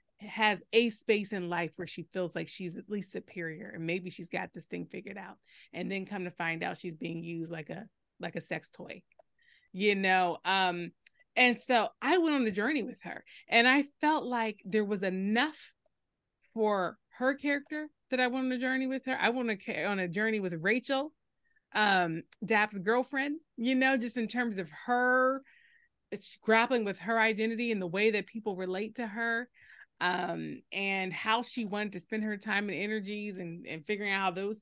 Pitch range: 190-250 Hz